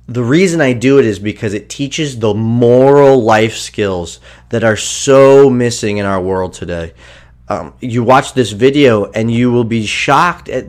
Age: 30-49